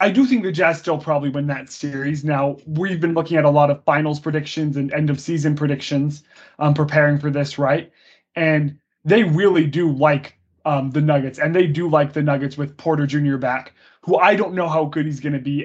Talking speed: 215 wpm